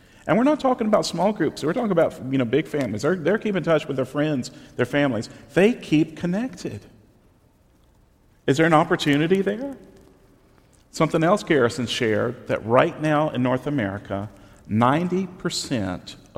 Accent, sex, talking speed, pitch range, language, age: American, male, 160 wpm, 125-200 Hz, English, 40-59